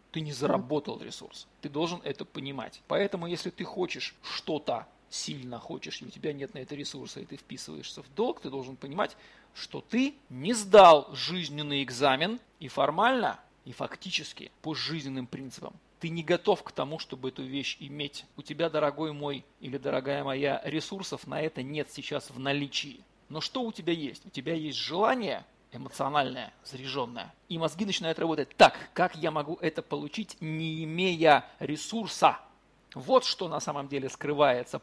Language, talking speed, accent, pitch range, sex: Russian, 165 wpm, native, 140-185 Hz, male